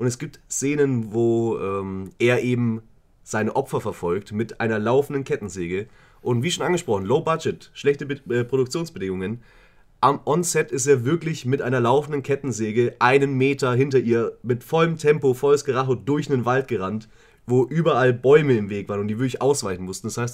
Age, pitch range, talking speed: 30-49, 110-140 Hz, 175 wpm